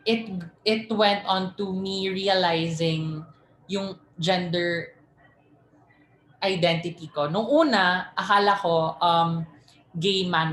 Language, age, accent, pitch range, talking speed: Filipino, 20-39, native, 160-200 Hz, 105 wpm